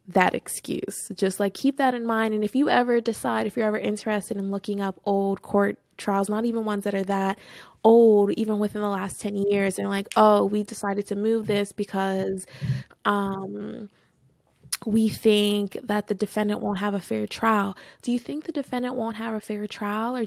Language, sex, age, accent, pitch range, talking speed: English, female, 20-39, American, 200-225 Hz, 200 wpm